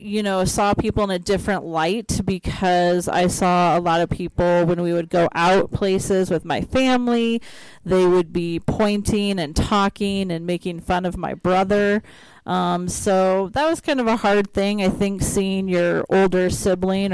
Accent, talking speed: American, 180 wpm